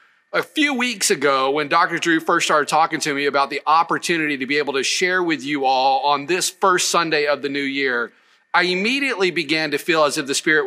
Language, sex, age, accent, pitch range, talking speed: English, male, 40-59, American, 140-170 Hz, 225 wpm